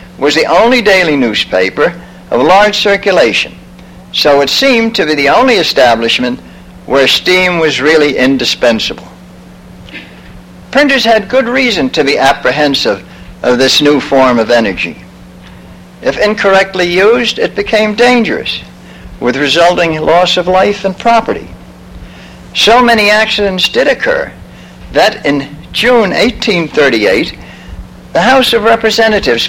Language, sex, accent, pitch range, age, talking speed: English, male, American, 140-215 Hz, 60-79, 120 wpm